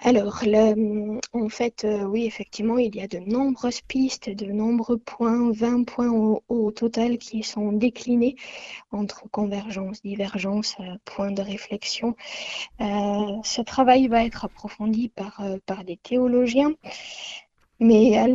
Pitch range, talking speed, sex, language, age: 205-250 Hz, 130 wpm, female, French, 20-39